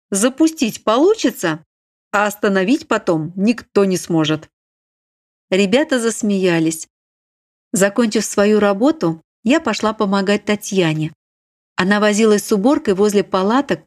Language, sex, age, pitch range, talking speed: Russian, female, 40-59, 170-225 Hz, 100 wpm